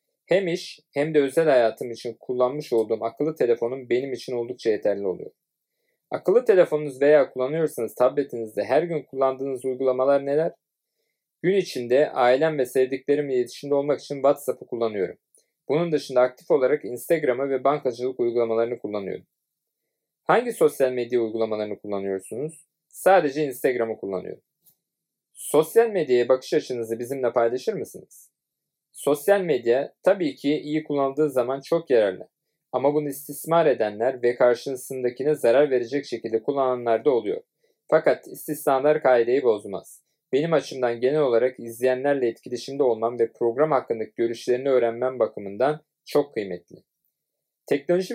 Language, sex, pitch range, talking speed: Turkish, male, 125-160 Hz, 125 wpm